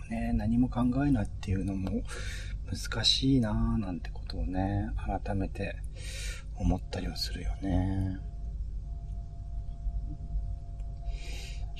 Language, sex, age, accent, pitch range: Japanese, male, 40-59, native, 85-125 Hz